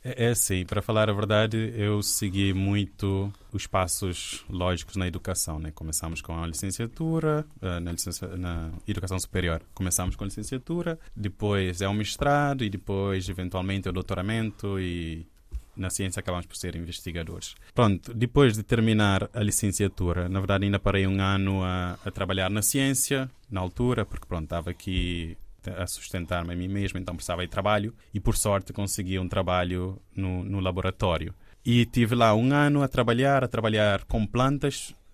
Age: 20-39